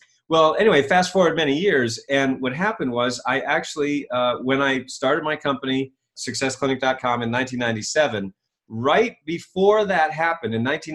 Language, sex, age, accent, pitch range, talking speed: English, male, 30-49, American, 120-150 Hz, 155 wpm